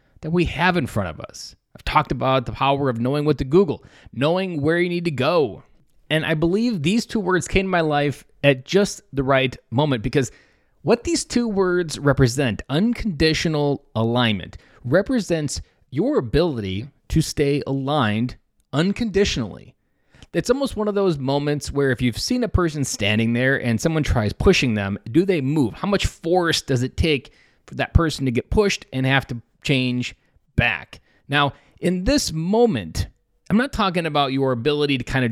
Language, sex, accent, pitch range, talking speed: English, male, American, 130-185 Hz, 180 wpm